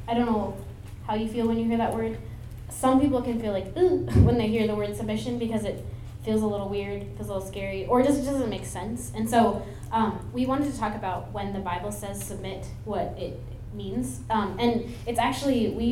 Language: English